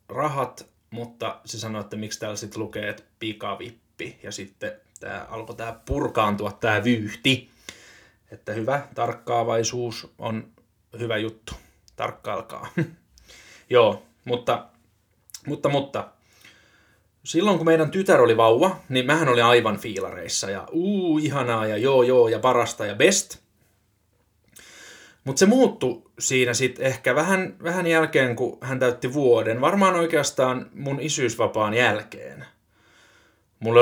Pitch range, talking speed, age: 115-145 Hz, 120 wpm, 20-39